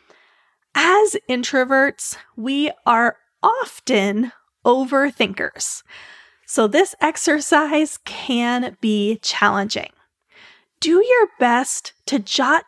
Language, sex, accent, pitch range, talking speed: English, female, American, 225-300 Hz, 80 wpm